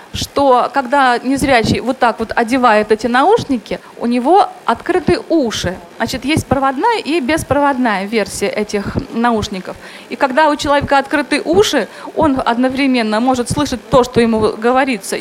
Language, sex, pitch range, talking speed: Russian, female, 230-300 Hz, 140 wpm